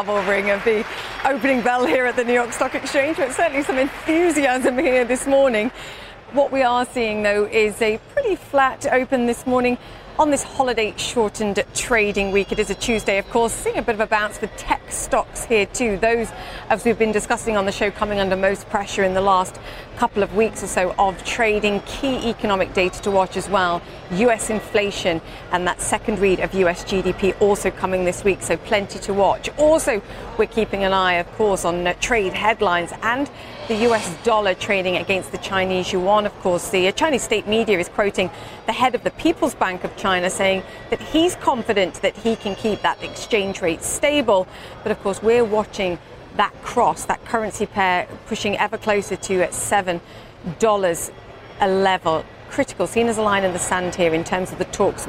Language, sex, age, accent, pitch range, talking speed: English, female, 40-59, British, 190-235 Hz, 195 wpm